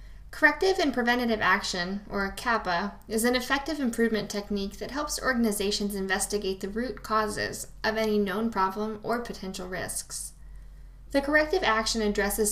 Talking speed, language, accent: 140 wpm, English, American